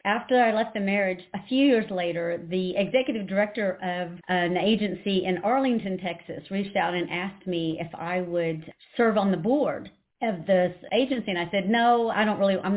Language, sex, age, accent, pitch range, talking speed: English, female, 50-69, American, 175-215 Hz, 195 wpm